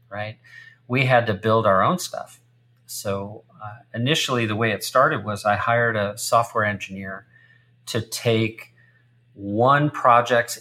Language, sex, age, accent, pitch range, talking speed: English, male, 40-59, American, 105-125 Hz, 140 wpm